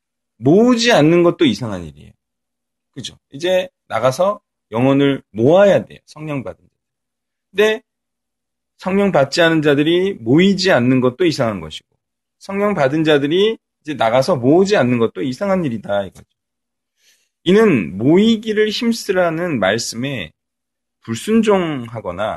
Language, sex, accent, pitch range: Korean, male, native, 125-200 Hz